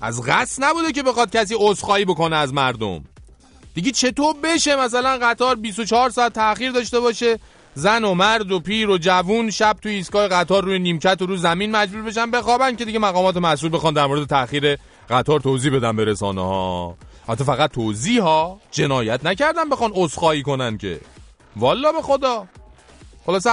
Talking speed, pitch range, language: 170 wpm, 160-220 Hz, English